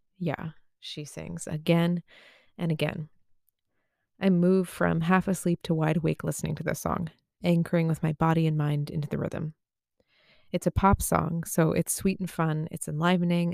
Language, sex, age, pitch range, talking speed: English, female, 20-39, 160-180 Hz, 170 wpm